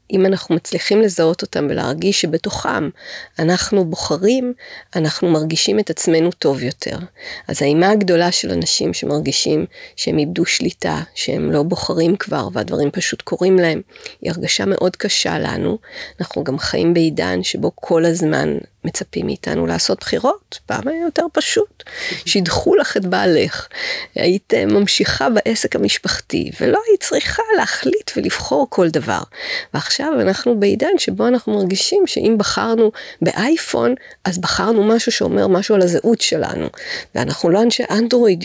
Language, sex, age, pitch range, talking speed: Hebrew, female, 30-49, 165-260 Hz, 135 wpm